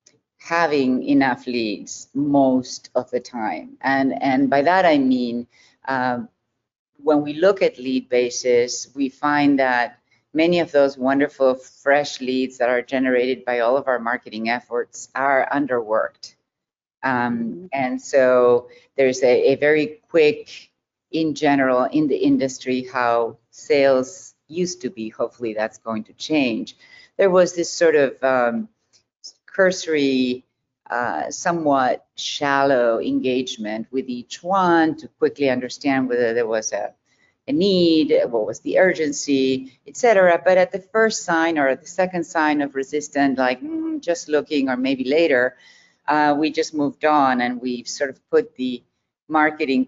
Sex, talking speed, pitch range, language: female, 145 wpm, 125-155 Hz, English